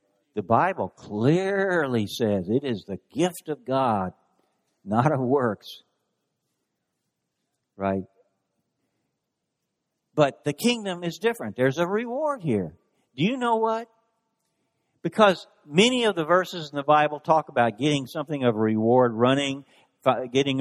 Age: 60-79